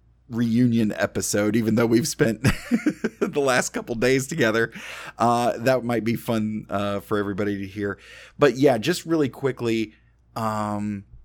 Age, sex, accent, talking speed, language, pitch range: 30-49, male, American, 150 wpm, English, 95-115 Hz